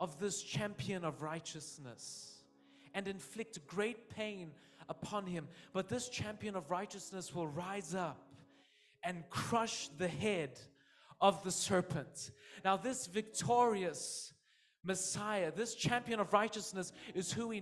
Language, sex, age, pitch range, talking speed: English, male, 30-49, 175-230 Hz, 125 wpm